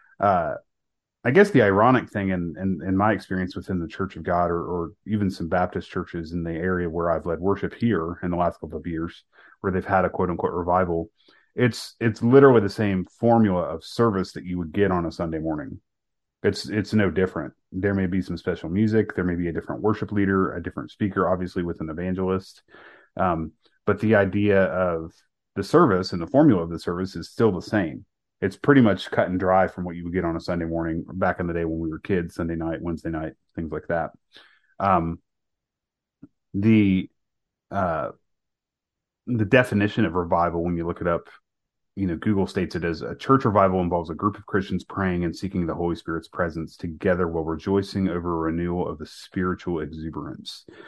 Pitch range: 85-100 Hz